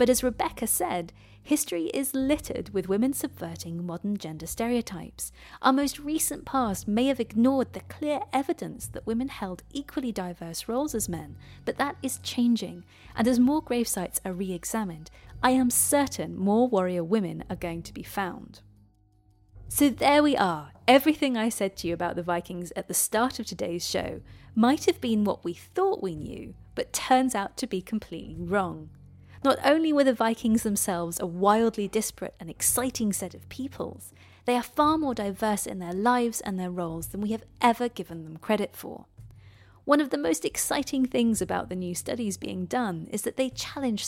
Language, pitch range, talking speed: English, 175-260 Hz, 185 wpm